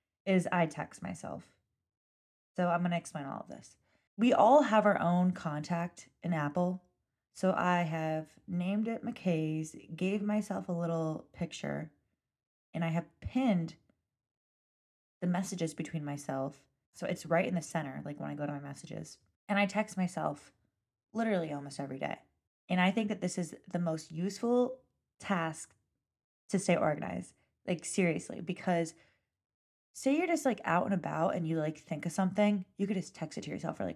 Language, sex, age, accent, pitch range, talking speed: English, female, 20-39, American, 155-190 Hz, 170 wpm